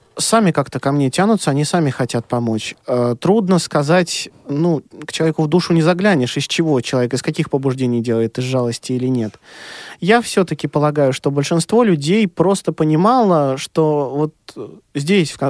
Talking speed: 155 wpm